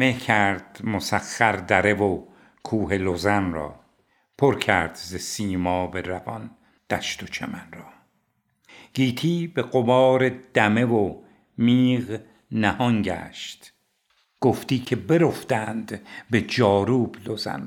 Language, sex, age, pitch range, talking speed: Persian, male, 60-79, 100-120 Hz, 110 wpm